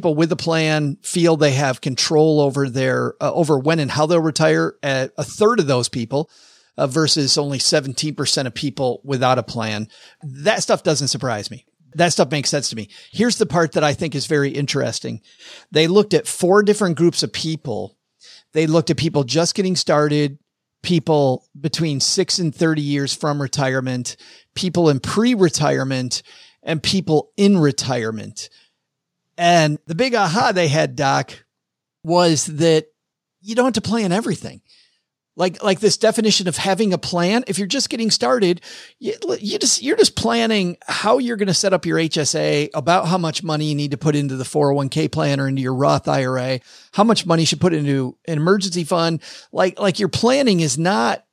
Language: English